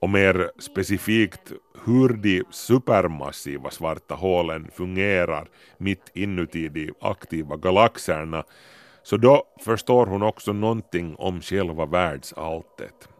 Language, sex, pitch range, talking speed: Swedish, male, 90-130 Hz, 105 wpm